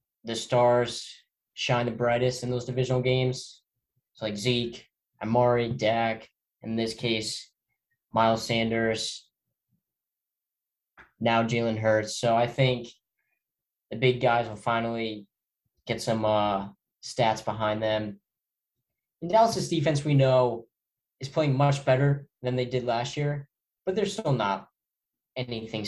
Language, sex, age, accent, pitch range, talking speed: English, male, 10-29, American, 115-135 Hz, 125 wpm